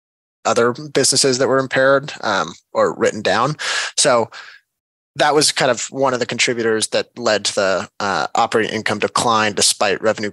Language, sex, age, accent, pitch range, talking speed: English, male, 20-39, American, 110-145 Hz, 165 wpm